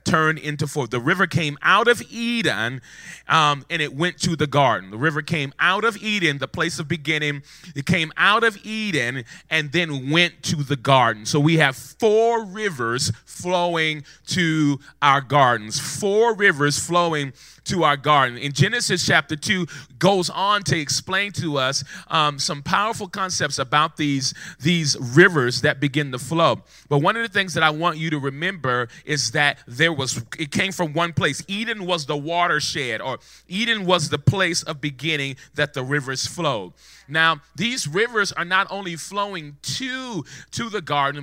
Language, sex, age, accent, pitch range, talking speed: English, male, 30-49, American, 145-180 Hz, 175 wpm